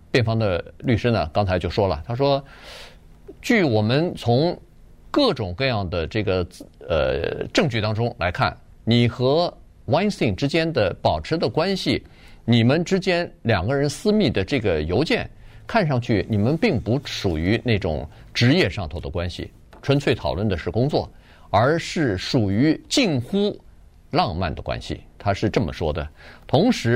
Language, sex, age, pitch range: Chinese, male, 50-69, 105-160 Hz